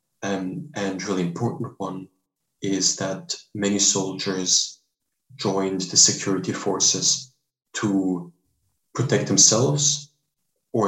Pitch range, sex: 85-100 Hz, male